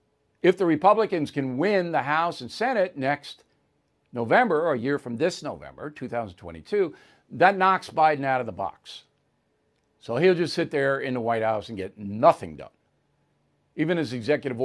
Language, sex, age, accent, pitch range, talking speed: English, male, 60-79, American, 120-165 Hz, 170 wpm